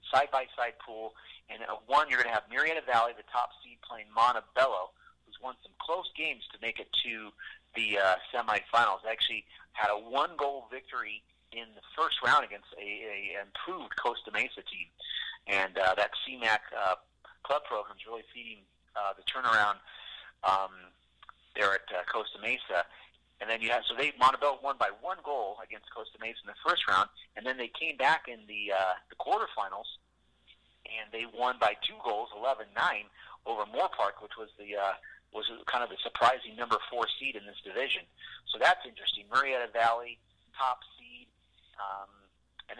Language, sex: English, male